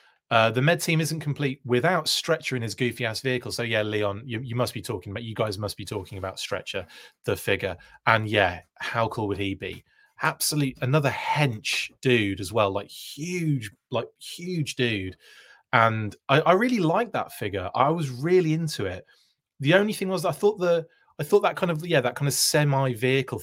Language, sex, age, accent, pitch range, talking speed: English, male, 30-49, British, 110-155 Hz, 195 wpm